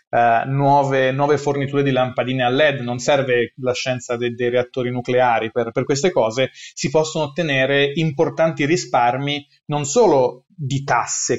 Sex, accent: male, native